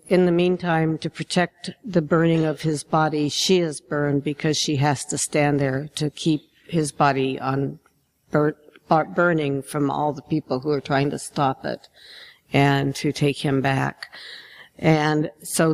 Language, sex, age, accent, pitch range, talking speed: English, female, 60-79, American, 145-170 Hz, 165 wpm